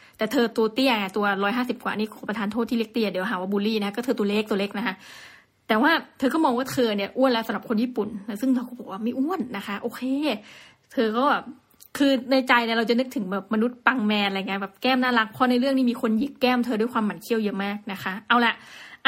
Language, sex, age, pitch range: Thai, female, 20-39, 210-260 Hz